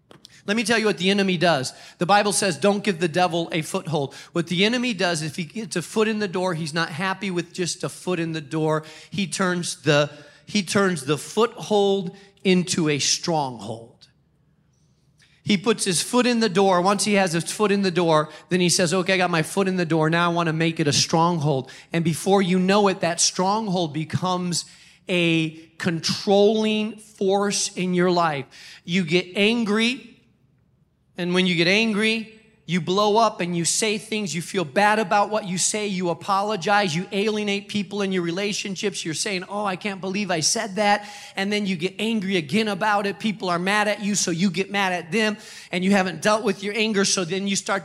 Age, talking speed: 40-59, 205 wpm